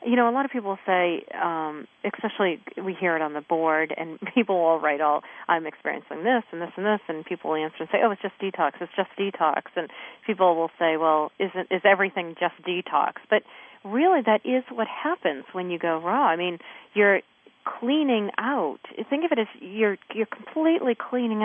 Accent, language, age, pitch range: American, English, 40-59, 170-215 Hz